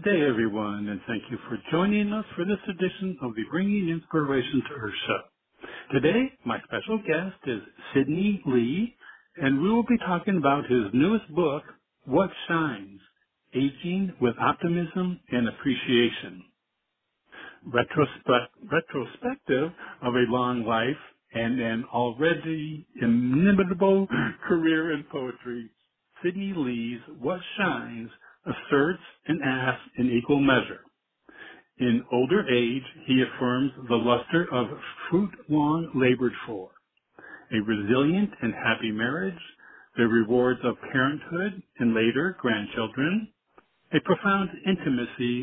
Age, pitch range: 60-79, 120-175 Hz